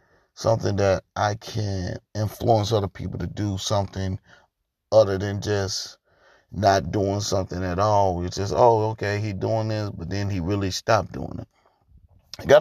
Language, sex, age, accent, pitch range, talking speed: English, male, 30-49, American, 95-120 Hz, 155 wpm